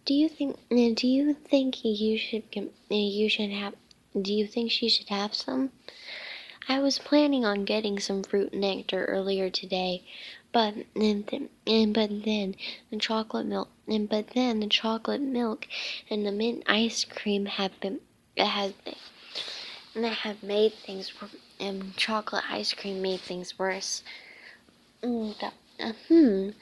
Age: 10-29